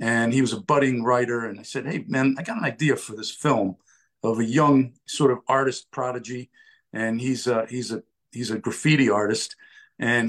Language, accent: English, American